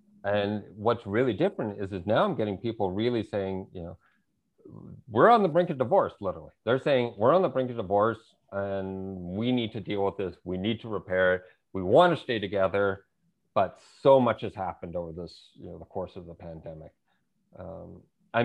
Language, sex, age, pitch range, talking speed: English, male, 40-59, 95-120 Hz, 200 wpm